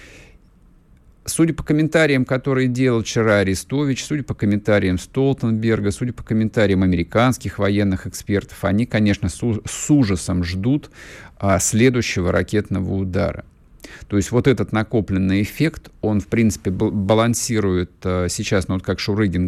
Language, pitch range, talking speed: Russian, 85-110 Hz, 120 wpm